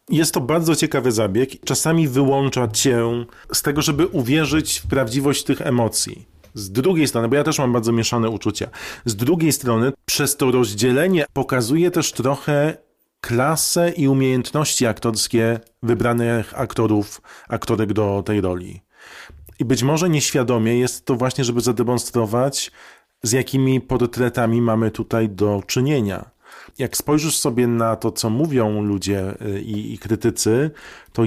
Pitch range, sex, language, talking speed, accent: 115-140 Hz, male, Polish, 140 wpm, native